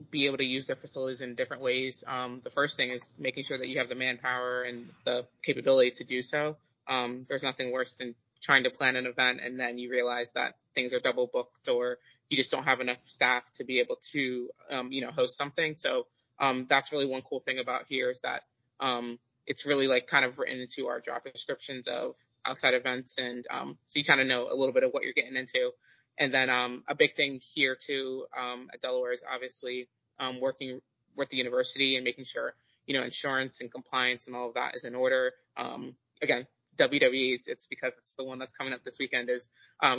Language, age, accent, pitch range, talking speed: English, 20-39, American, 125-140 Hz, 225 wpm